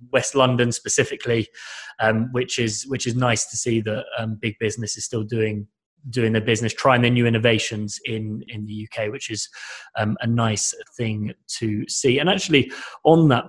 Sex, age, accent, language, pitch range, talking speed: male, 20-39, British, English, 115-135 Hz, 180 wpm